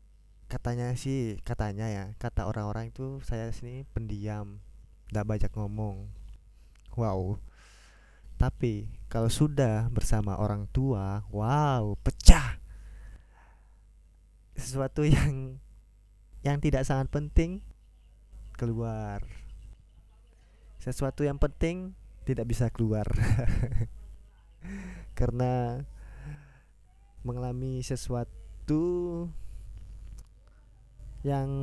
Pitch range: 100-130 Hz